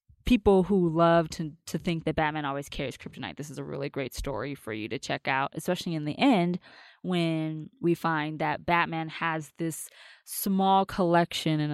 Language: English